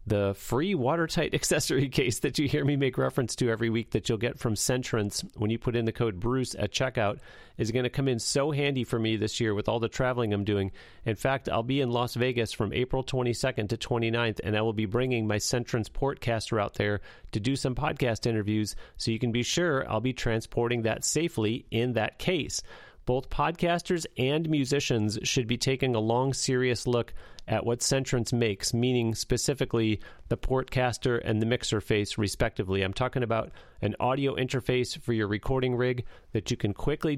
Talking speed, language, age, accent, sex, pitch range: 200 wpm, English, 40-59, American, male, 110-135 Hz